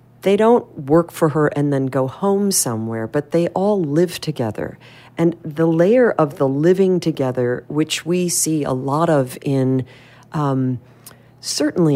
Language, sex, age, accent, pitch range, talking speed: English, female, 40-59, American, 130-160 Hz, 155 wpm